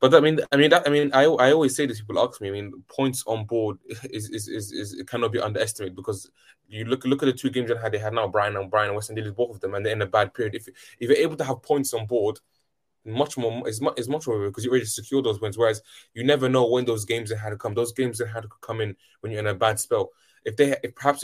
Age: 10-29